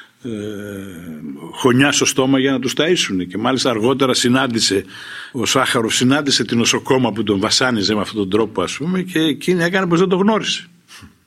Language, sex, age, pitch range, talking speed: Greek, male, 60-79, 95-130 Hz, 170 wpm